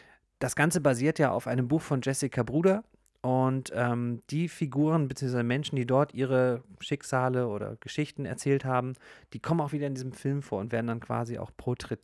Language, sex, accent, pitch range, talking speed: German, male, German, 120-140 Hz, 190 wpm